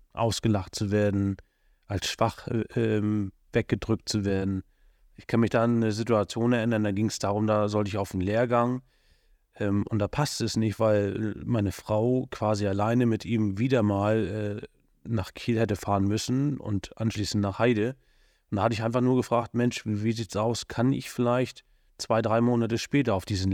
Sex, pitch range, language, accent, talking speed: male, 100-115 Hz, German, German, 185 wpm